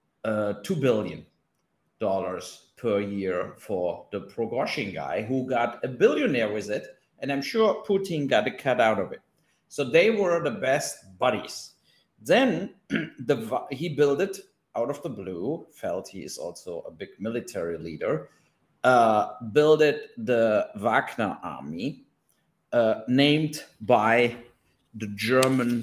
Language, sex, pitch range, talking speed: English, male, 105-140 Hz, 140 wpm